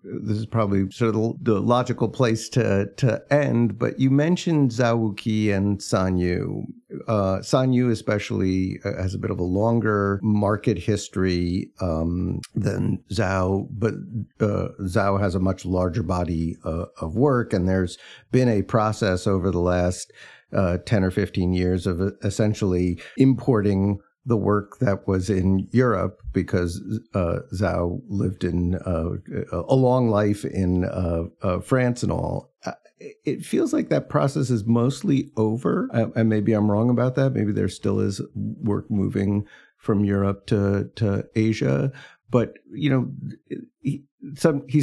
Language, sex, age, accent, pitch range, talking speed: English, male, 50-69, American, 95-120 Hz, 150 wpm